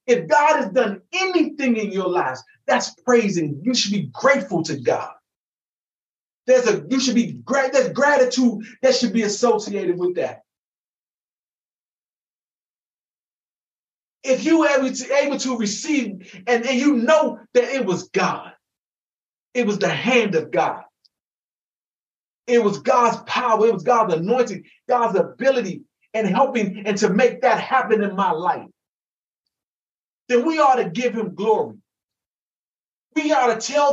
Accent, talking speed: American, 145 wpm